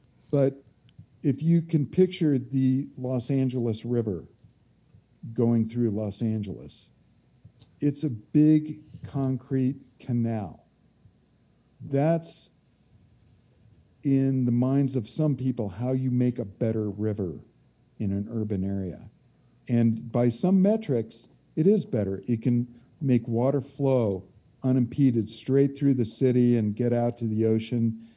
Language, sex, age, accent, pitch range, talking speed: English, male, 50-69, American, 115-145 Hz, 125 wpm